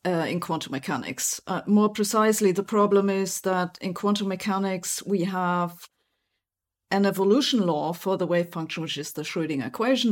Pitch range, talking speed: 175-210 Hz, 165 wpm